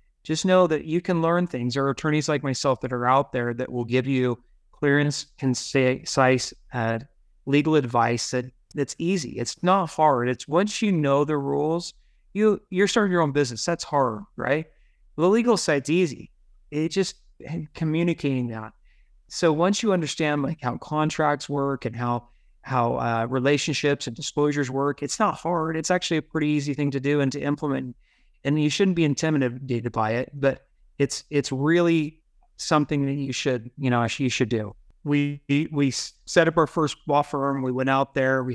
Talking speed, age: 180 wpm, 30-49